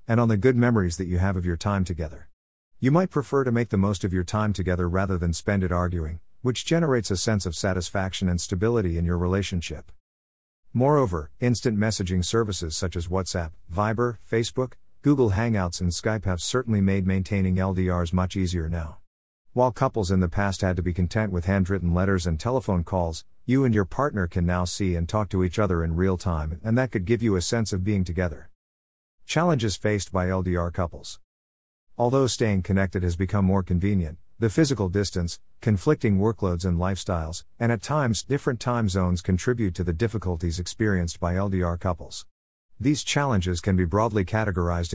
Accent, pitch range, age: American, 90-110 Hz, 50-69